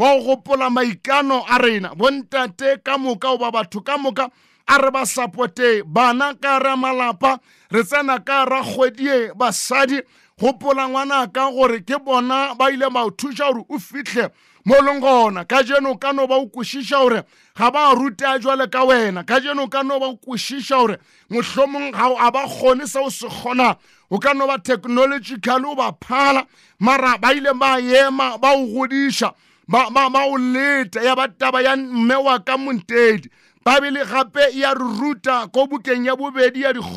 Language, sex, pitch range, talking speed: English, male, 245-275 Hz, 100 wpm